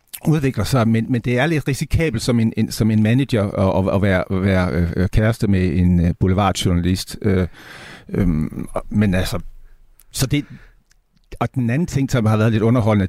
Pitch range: 95-125 Hz